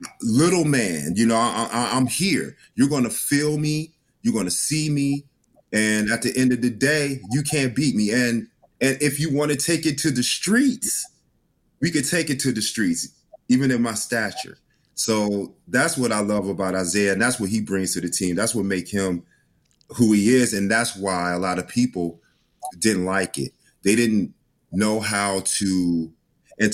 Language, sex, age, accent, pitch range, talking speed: English, male, 30-49, American, 95-125 Hz, 200 wpm